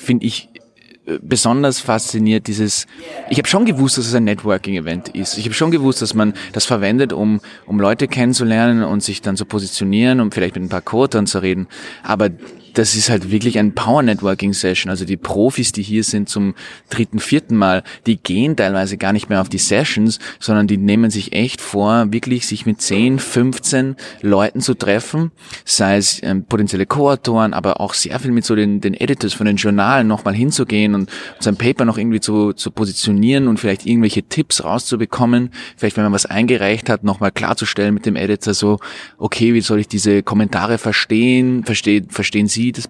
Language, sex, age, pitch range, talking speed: English, male, 20-39, 100-120 Hz, 185 wpm